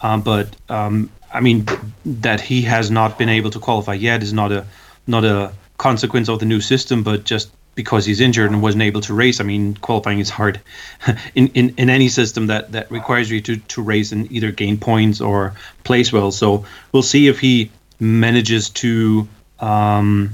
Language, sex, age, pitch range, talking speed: English, male, 30-49, 105-120 Hz, 195 wpm